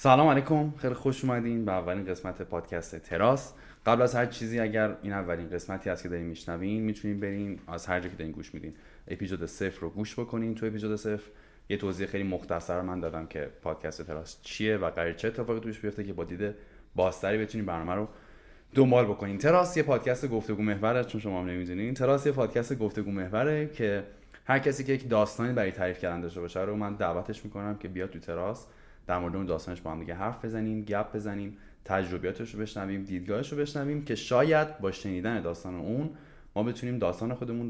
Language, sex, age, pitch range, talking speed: Persian, male, 20-39, 90-115 Hz, 195 wpm